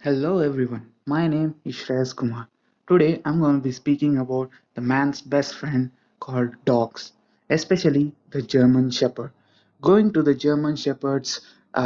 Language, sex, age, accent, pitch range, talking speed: English, male, 20-39, Indian, 125-150 Hz, 150 wpm